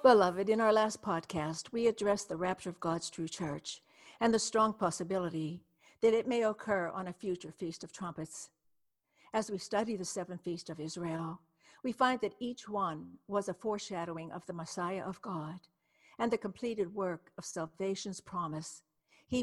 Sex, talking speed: female, 175 wpm